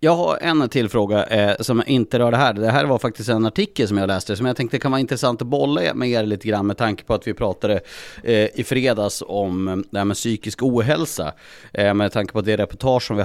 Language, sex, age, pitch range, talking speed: Swedish, male, 30-49, 95-125 Hz, 250 wpm